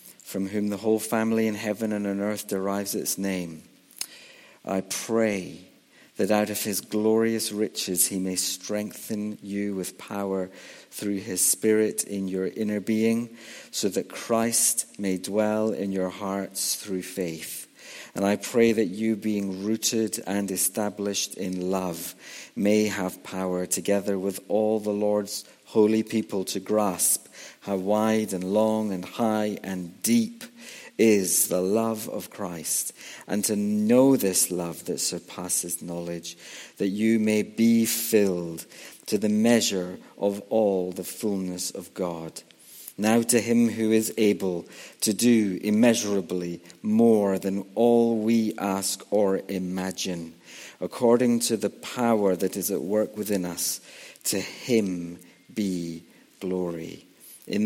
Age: 50-69